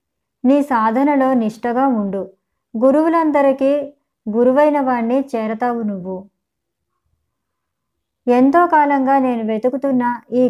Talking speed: 80 wpm